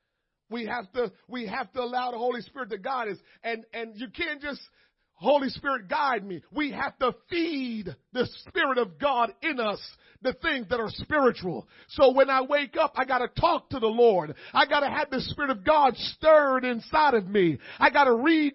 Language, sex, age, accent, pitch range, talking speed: English, male, 40-59, American, 230-290 Hz, 200 wpm